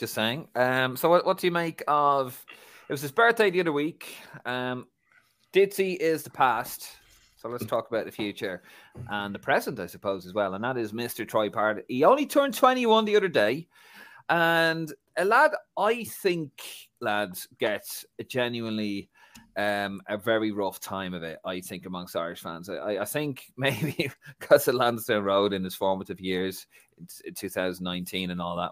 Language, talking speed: English, 180 wpm